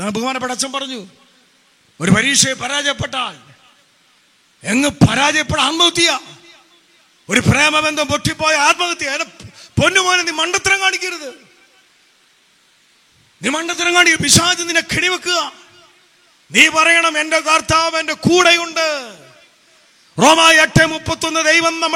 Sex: male